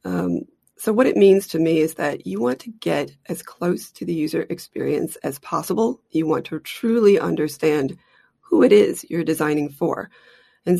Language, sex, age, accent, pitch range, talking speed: English, female, 30-49, American, 155-210 Hz, 185 wpm